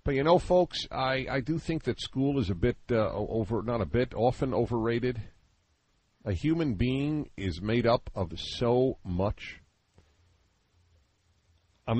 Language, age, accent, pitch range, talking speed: English, 50-69, American, 90-125 Hz, 150 wpm